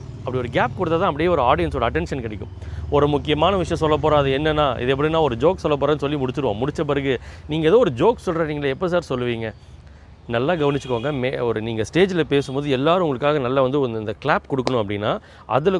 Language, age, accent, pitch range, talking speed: Tamil, 30-49, native, 115-155 Hz, 185 wpm